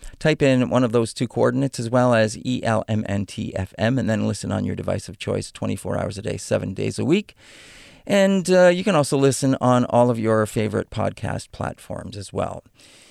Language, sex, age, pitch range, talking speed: English, male, 40-59, 110-135 Hz, 190 wpm